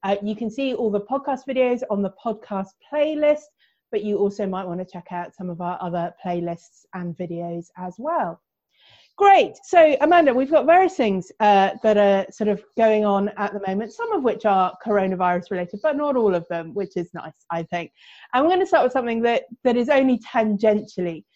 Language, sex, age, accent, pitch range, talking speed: English, female, 30-49, British, 190-230 Hz, 205 wpm